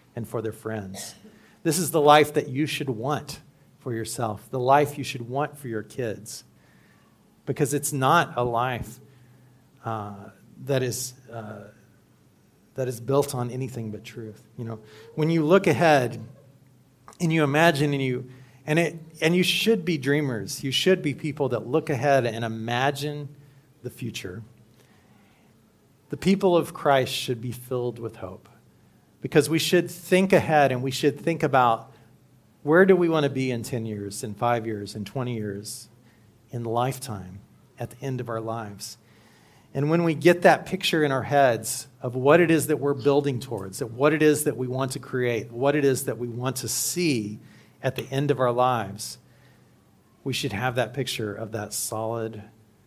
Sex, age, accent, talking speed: male, 40-59, American, 180 wpm